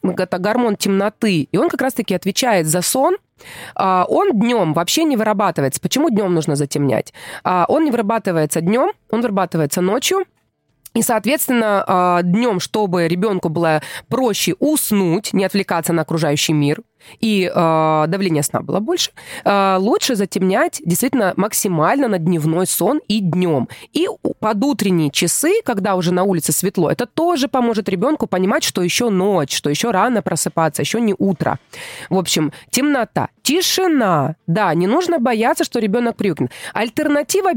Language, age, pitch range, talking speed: Russian, 20-39, 175-245 Hz, 145 wpm